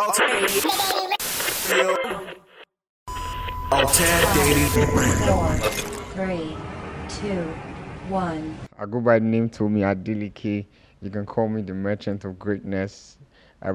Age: 20-39